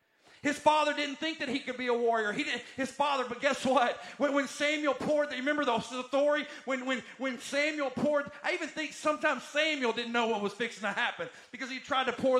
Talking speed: 225 wpm